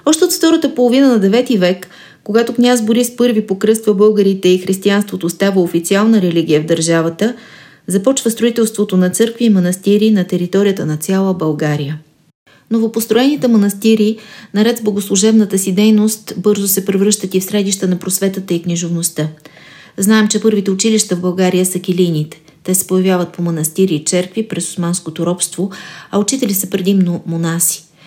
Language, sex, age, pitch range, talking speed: Bulgarian, female, 30-49, 175-215 Hz, 150 wpm